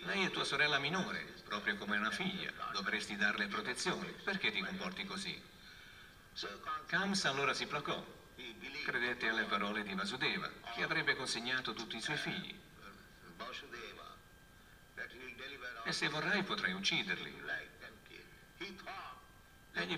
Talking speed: 115 wpm